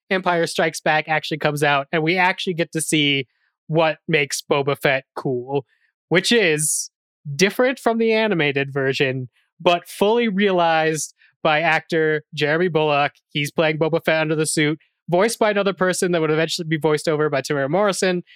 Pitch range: 150-180 Hz